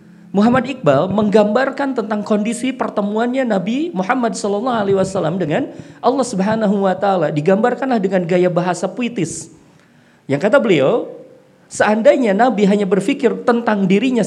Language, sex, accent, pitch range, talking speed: Indonesian, male, native, 185-260 Hz, 125 wpm